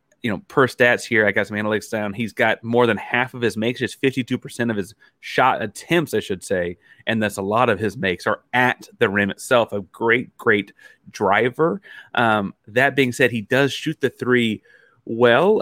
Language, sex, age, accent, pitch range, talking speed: English, male, 30-49, American, 105-125 Hz, 205 wpm